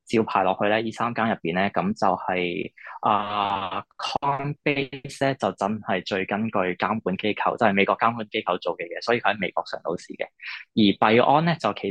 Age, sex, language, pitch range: 20-39, male, Chinese, 95-115 Hz